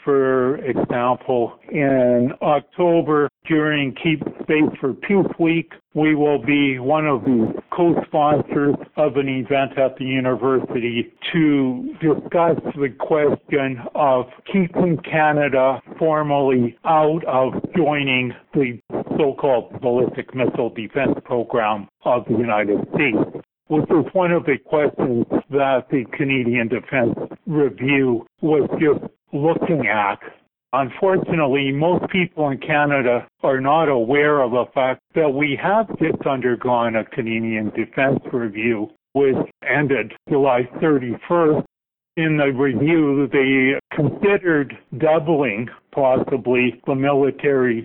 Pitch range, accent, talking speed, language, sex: 125-155 Hz, American, 115 wpm, English, male